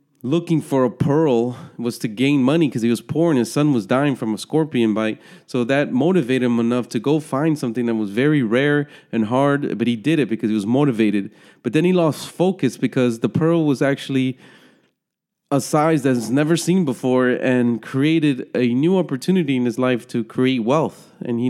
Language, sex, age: English, male, 30-49